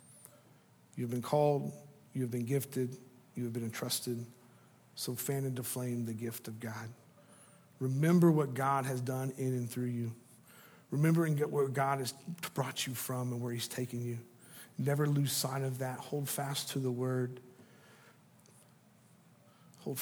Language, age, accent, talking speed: English, 50-69, American, 155 wpm